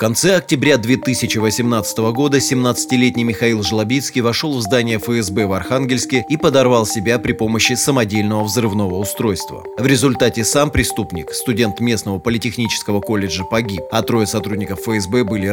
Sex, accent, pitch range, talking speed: male, native, 105-130 Hz, 140 wpm